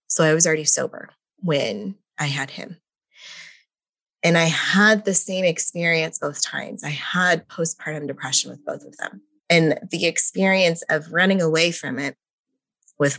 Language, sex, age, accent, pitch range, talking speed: English, female, 20-39, American, 140-170 Hz, 155 wpm